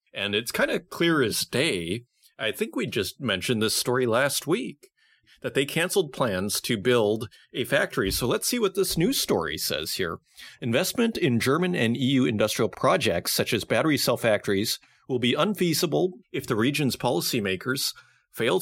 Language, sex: English, male